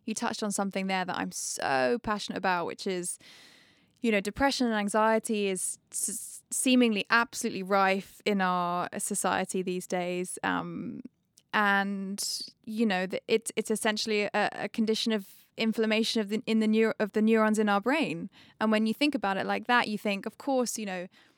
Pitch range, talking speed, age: 185-225 Hz, 180 wpm, 20-39